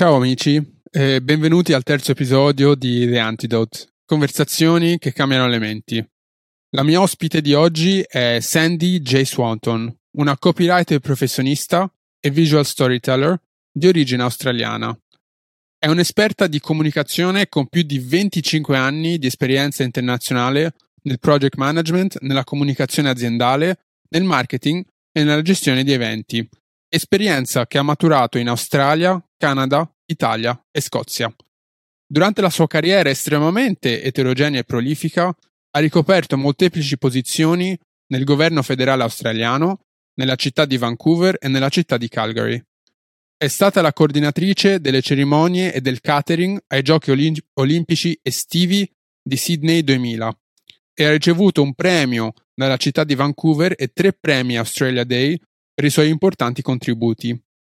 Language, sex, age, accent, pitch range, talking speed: Italian, male, 20-39, native, 130-165 Hz, 135 wpm